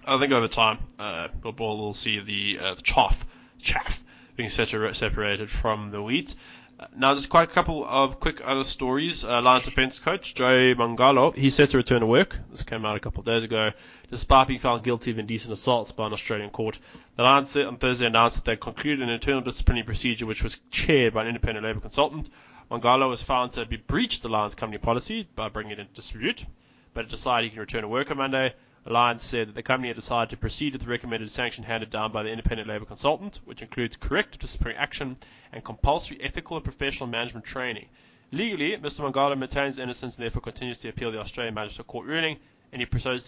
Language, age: English, 20-39